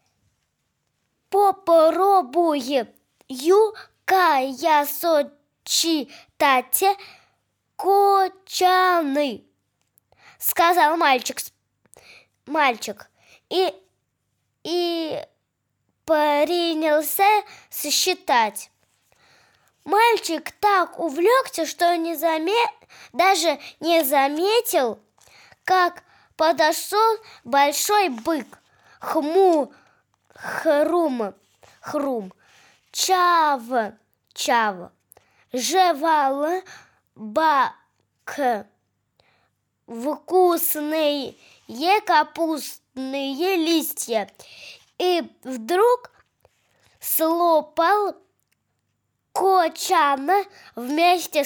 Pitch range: 295-370 Hz